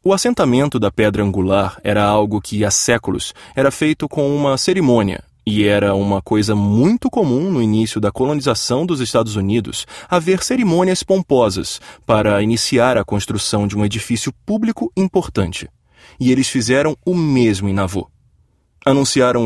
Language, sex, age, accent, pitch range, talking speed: Portuguese, male, 20-39, Brazilian, 105-155 Hz, 150 wpm